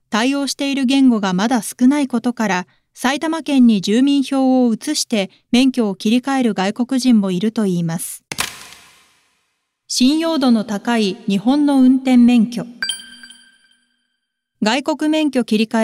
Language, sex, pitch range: Japanese, female, 205-275 Hz